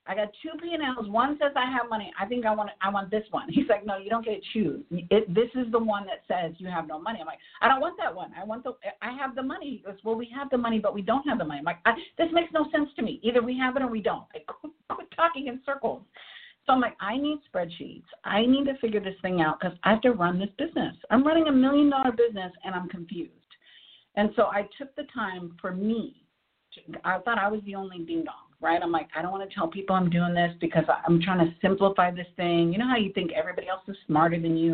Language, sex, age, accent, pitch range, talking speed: English, female, 50-69, American, 180-255 Hz, 275 wpm